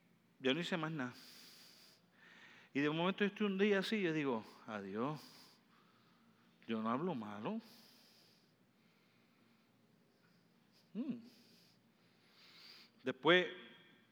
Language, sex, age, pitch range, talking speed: Spanish, male, 50-69, 140-195 Hz, 90 wpm